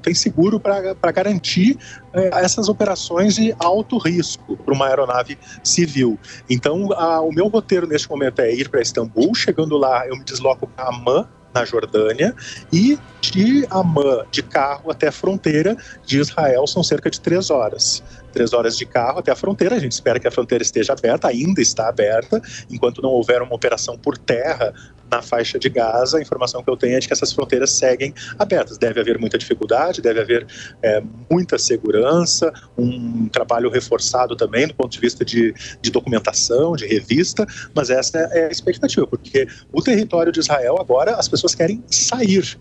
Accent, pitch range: Brazilian, 125-190 Hz